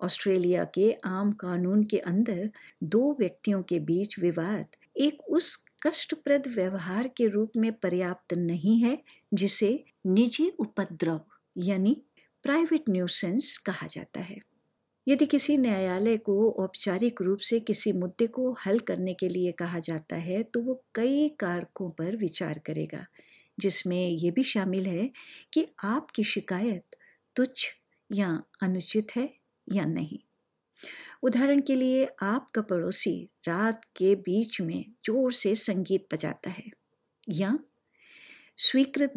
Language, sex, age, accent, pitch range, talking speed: Hindi, female, 50-69, native, 185-245 Hz, 130 wpm